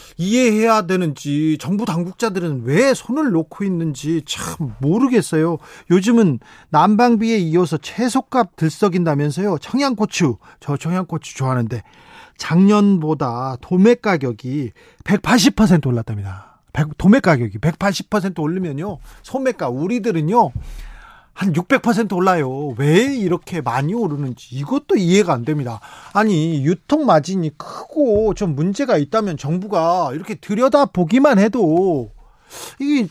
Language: Korean